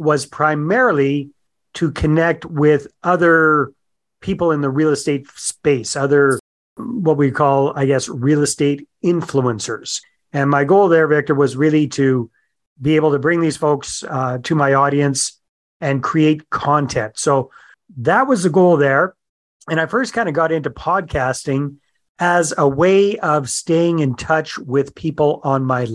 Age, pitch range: 40-59, 130-160 Hz